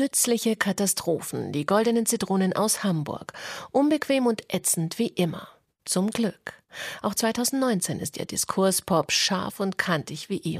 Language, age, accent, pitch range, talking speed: German, 40-59, German, 170-215 Hz, 135 wpm